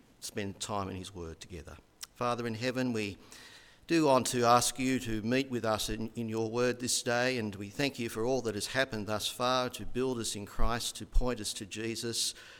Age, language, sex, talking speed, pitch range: 50-69, English, male, 220 wpm, 100-125 Hz